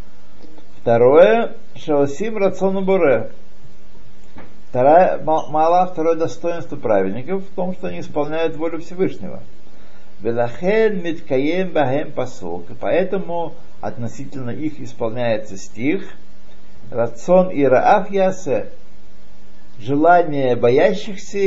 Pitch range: 110-160 Hz